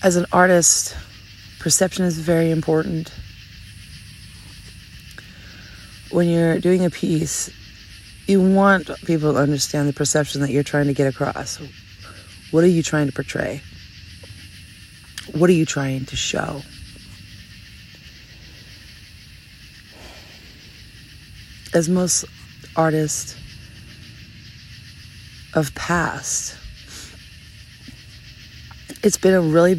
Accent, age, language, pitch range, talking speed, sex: American, 40-59, English, 100-150 Hz, 95 wpm, female